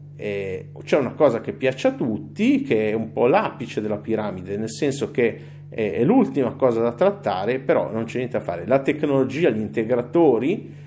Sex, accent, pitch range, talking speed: male, native, 110-145 Hz, 175 wpm